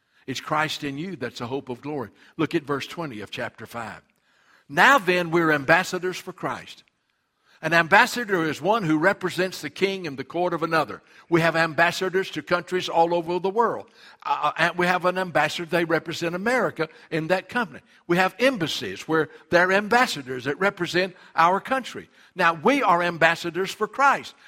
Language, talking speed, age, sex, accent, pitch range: English, 175 wpm, 60-79, male, American, 150-190 Hz